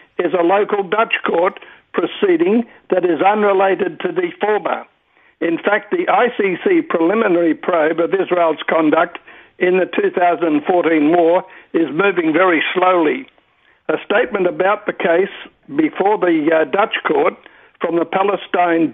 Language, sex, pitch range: English, male, 170-245 Hz